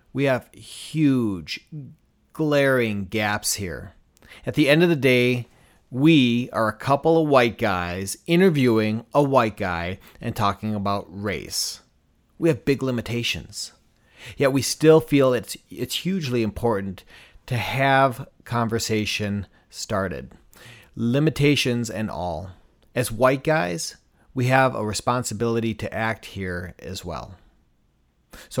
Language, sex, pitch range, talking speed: English, male, 105-130 Hz, 125 wpm